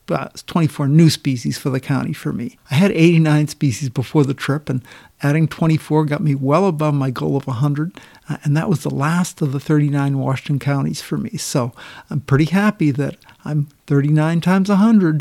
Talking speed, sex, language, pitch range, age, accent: 190 wpm, male, English, 135-170 Hz, 60-79, American